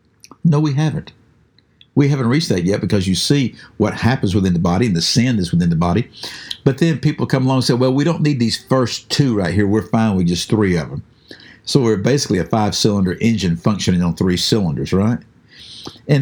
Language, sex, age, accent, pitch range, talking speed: English, male, 60-79, American, 105-150 Hz, 215 wpm